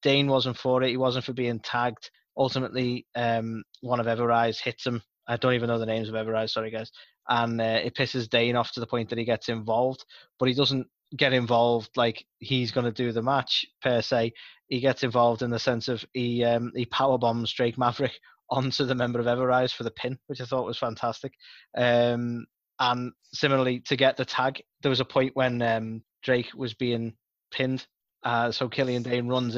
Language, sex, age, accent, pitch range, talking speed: English, male, 20-39, British, 120-130 Hz, 205 wpm